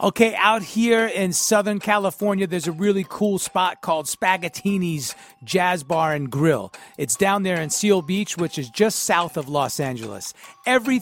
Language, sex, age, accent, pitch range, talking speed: English, male, 40-59, American, 170-220 Hz, 170 wpm